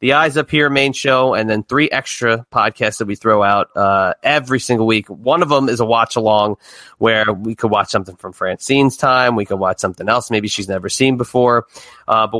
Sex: male